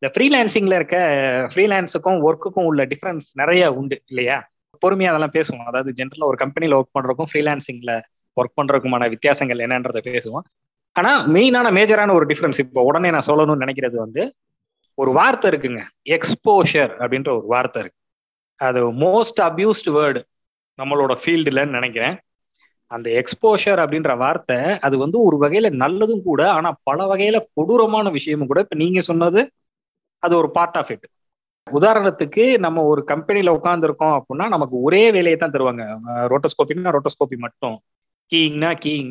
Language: Tamil